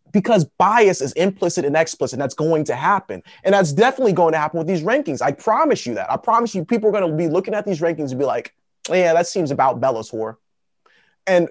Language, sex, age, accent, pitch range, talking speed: English, male, 30-49, American, 145-200 Hz, 240 wpm